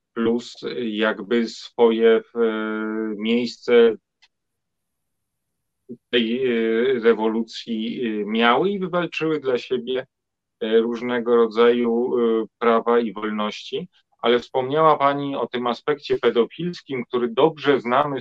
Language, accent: Polish, native